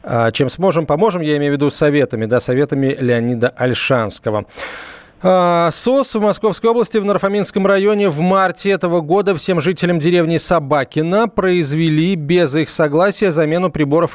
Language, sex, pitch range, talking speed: Russian, male, 145-190 Hz, 150 wpm